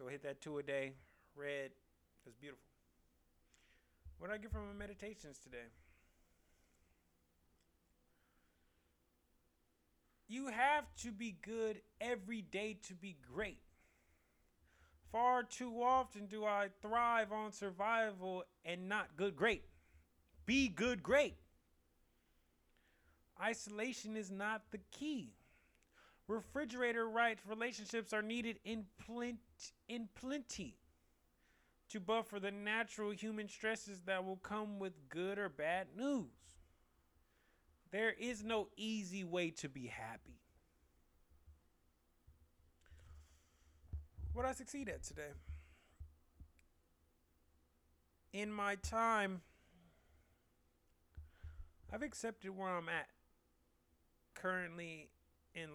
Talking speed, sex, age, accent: 100 wpm, male, 30-49, American